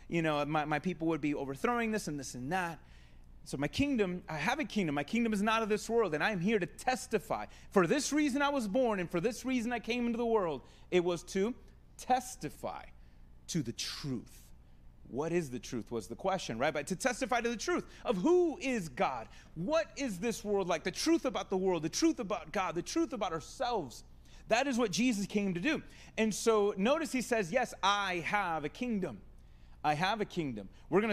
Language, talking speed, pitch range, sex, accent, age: English, 220 wpm, 150-230 Hz, male, American, 30-49